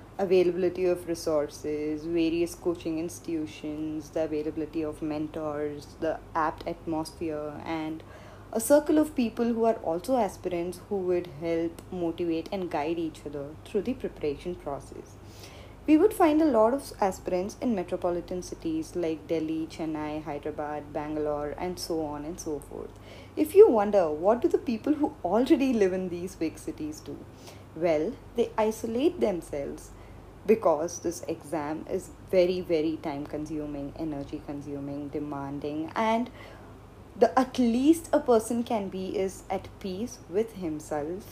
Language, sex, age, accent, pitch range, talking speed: Tamil, female, 20-39, native, 155-225 Hz, 140 wpm